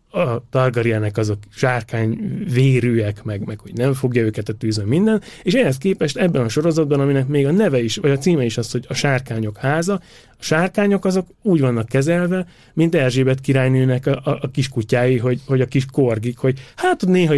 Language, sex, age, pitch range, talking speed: Hungarian, male, 30-49, 115-140 Hz, 190 wpm